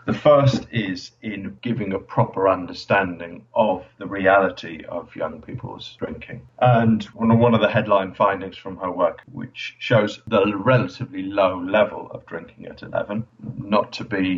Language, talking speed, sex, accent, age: English, 155 wpm, male, British, 40-59